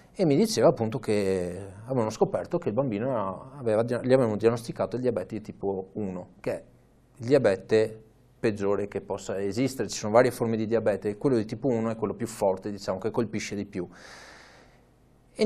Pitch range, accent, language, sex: 105-130 Hz, native, Italian, male